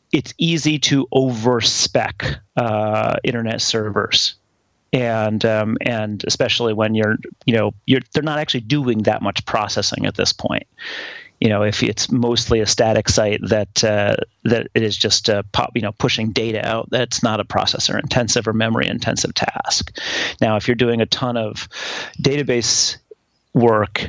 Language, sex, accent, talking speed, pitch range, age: English, male, American, 165 wpm, 110-125 Hz, 30-49